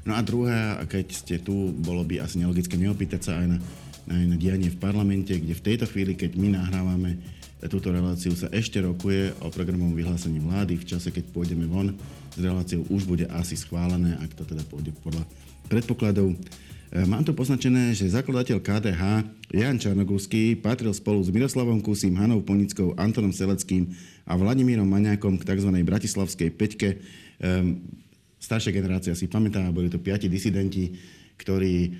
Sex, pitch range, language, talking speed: male, 90-100 Hz, Slovak, 160 wpm